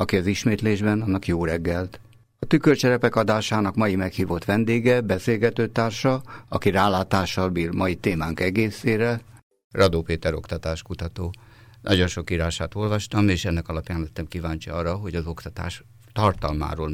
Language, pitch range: Hungarian, 80-110 Hz